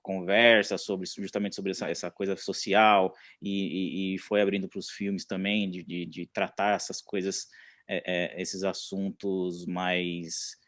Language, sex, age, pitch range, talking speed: Portuguese, male, 20-39, 95-130 Hz, 150 wpm